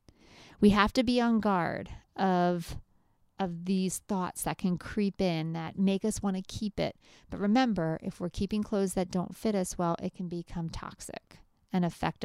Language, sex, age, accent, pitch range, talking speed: English, female, 40-59, American, 175-220 Hz, 185 wpm